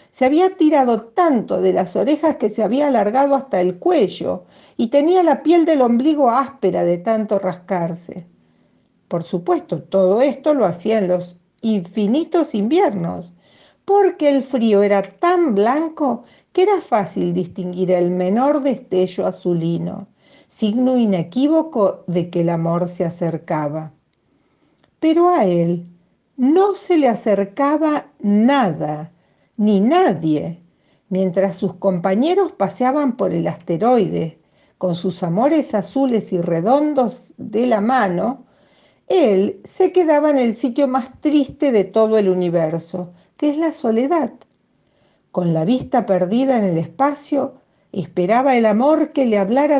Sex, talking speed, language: female, 135 wpm, Spanish